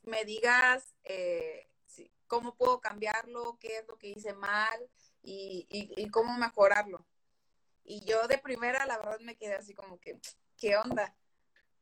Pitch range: 210-255 Hz